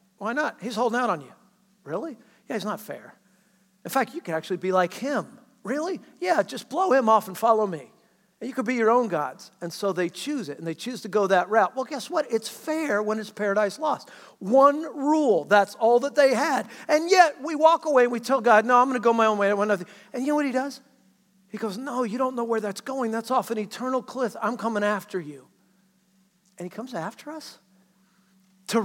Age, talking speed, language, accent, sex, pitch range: 50-69, 235 wpm, English, American, male, 195-260 Hz